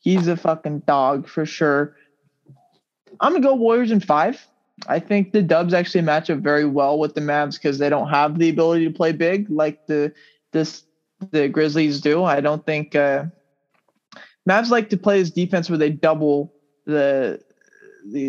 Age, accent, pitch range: 20-39, American, 150-185 Hz